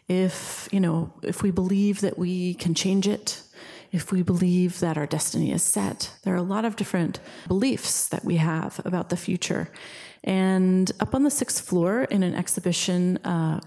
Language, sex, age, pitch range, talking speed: English, female, 30-49, 170-195 Hz, 185 wpm